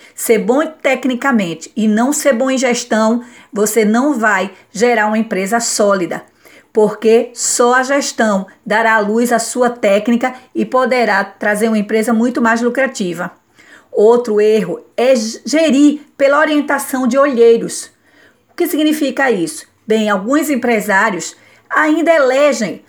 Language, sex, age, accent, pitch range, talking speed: Portuguese, female, 40-59, Brazilian, 215-270 Hz, 135 wpm